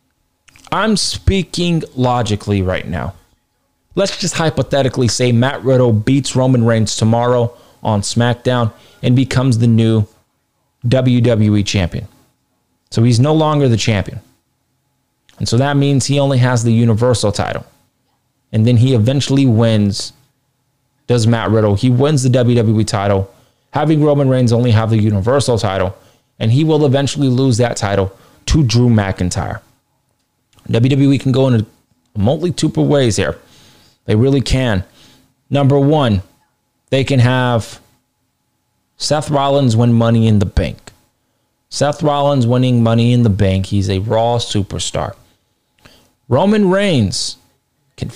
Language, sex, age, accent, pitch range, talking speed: English, male, 20-39, American, 110-135 Hz, 135 wpm